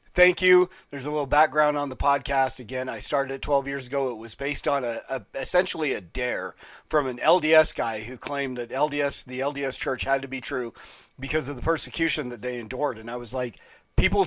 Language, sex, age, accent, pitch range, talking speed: English, male, 40-59, American, 125-150 Hz, 220 wpm